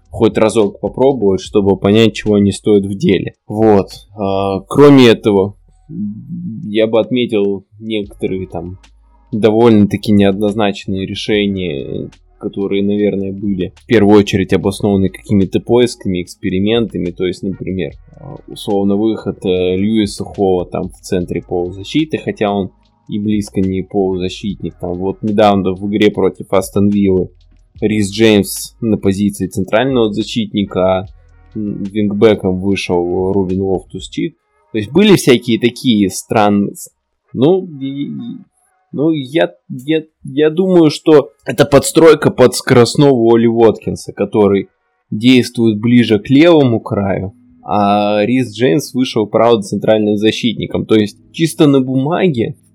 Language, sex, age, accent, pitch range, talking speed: Russian, male, 20-39, native, 95-120 Hz, 125 wpm